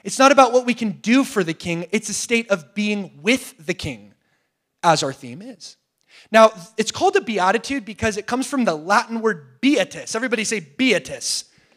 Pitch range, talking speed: 165-245 Hz, 195 wpm